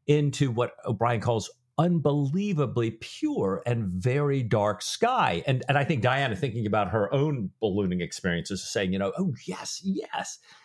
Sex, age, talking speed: male, 50-69, 160 wpm